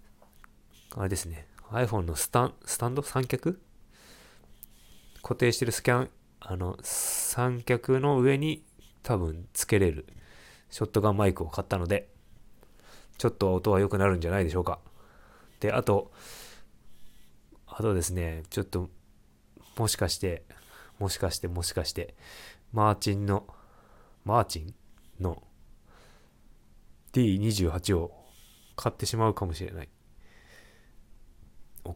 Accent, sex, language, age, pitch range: native, male, Japanese, 20-39, 85-105 Hz